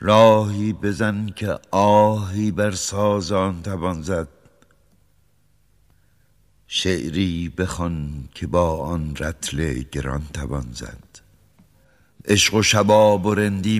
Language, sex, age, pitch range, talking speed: Persian, male, 60-79, 75-95 Hz, 95 wpm